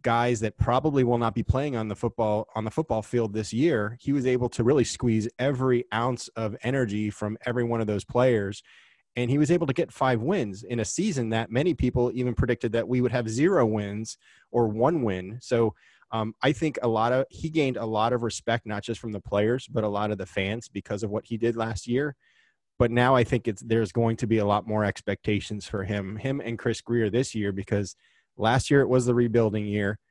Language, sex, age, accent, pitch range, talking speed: English, male, 20-39, American, 110-125 Hz, 235 wpm